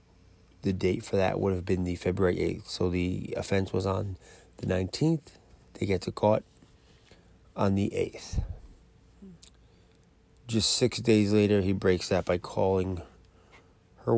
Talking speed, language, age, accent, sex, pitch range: 145 wpm, English, 30-49, American, male, 90-105 Hz